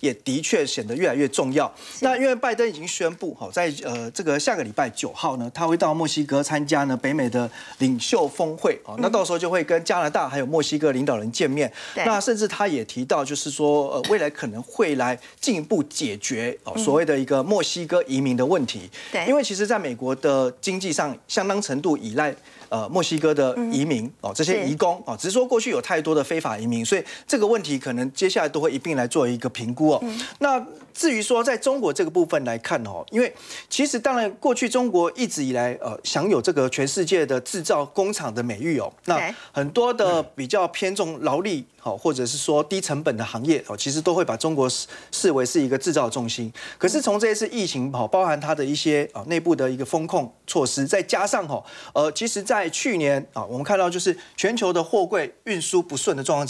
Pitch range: 135-210 Hz